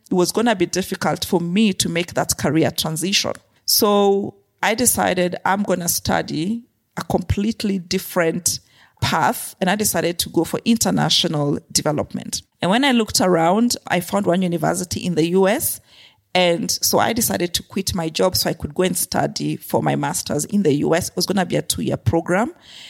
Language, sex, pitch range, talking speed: English, female, 165-210 Hz, 190 wpm